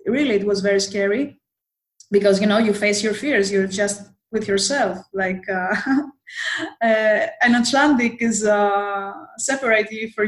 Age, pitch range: 20-39, 205-260 Hz